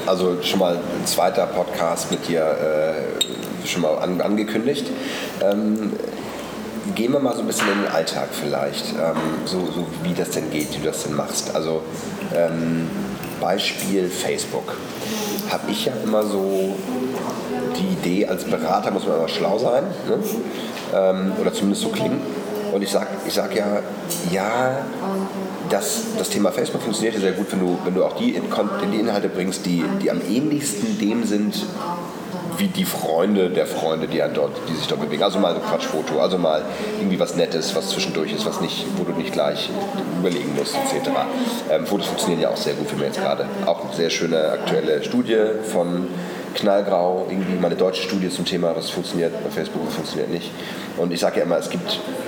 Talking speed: 185 wpm